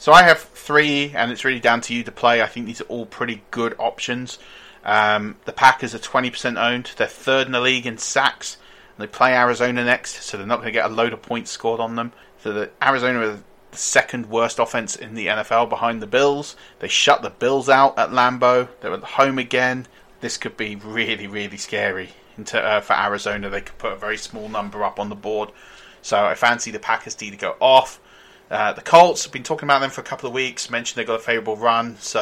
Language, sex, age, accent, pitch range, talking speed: English, male, 30-49, British, 110-130 Hz, 235 wpm